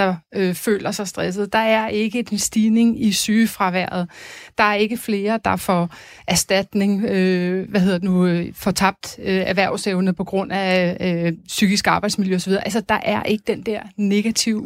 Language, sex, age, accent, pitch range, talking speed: Danish, female, 30-49, native, 195-240 Hz, 175 wpm